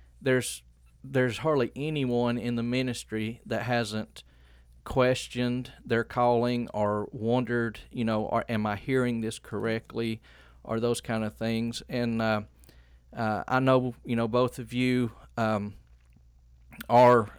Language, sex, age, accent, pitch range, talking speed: English, male, 40-59, American, 105-125 Hz, 135 wpm